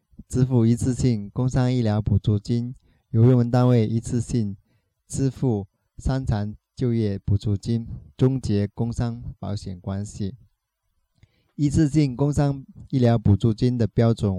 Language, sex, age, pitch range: Chinese, male, 20-39, 105-125 Hz